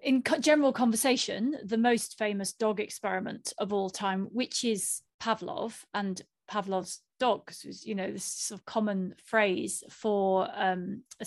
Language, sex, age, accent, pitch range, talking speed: English, female, 30-49, British, 200-240 Hz, 145 wpm